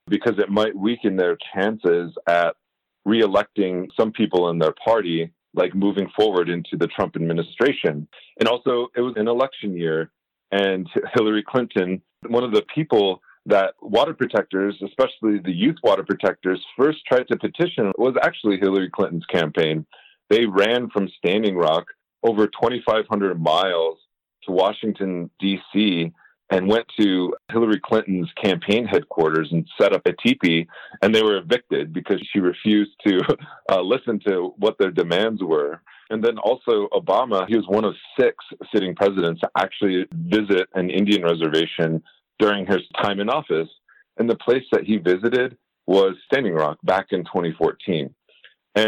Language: English